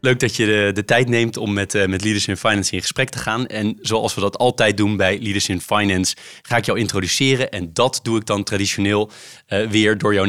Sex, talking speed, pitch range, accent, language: male, 245 wpm, 100-125 Hz, Dutch, Dutch